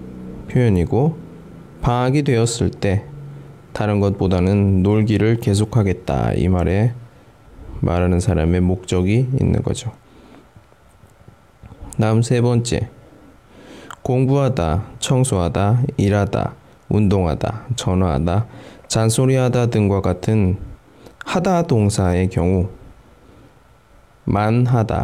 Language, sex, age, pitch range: Chinese, male, 20-39, 95-125 Hz